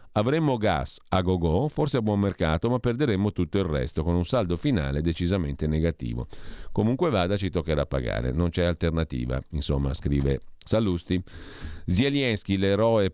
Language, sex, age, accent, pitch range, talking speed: Italian, male, 40-59, native, 80-95 Hz, 145 wpm